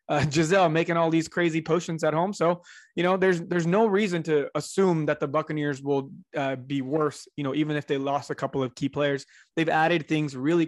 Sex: male